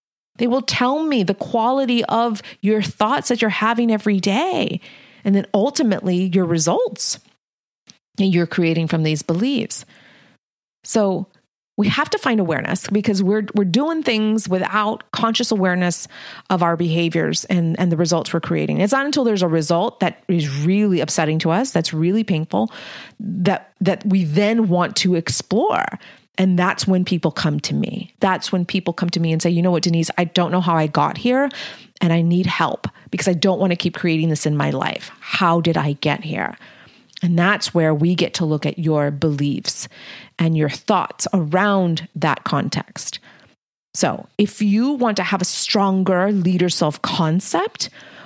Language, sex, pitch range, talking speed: English, female, 170-215 Hz, 180 wpm